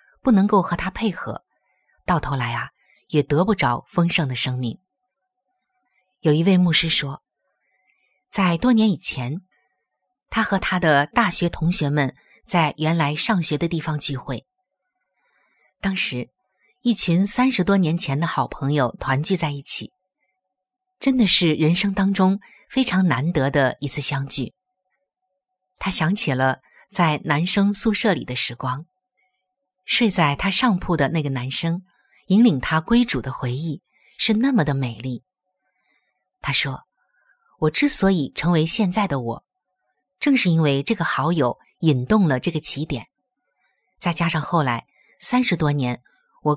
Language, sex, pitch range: Chinese, female, 150-200 Hz